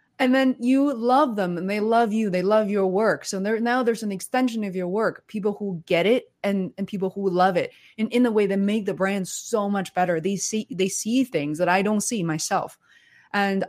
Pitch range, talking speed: 170-205 Hz, 235 wpm